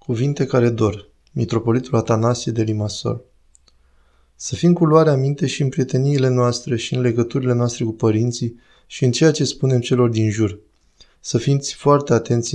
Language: Romanian